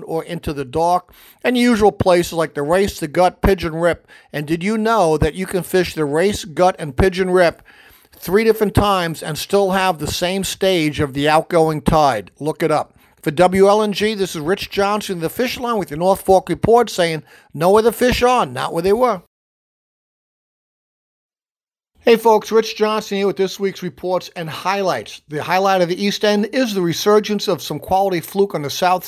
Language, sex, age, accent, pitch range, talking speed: English, male, 50-69, American, 170-200 Hz, 195 wpm